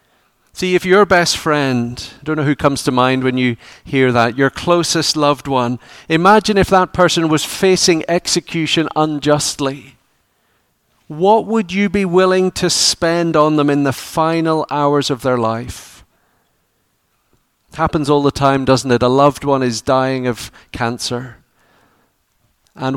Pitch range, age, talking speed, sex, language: 135-170 Hz, 40-59, 155 wpm, male, English